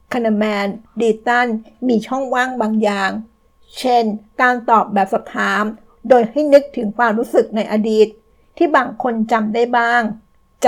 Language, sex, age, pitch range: Thai, female, 60-79, 215-250 Hz